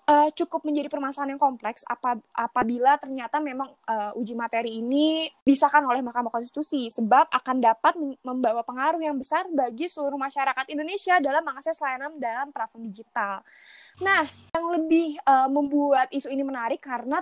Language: Indonesian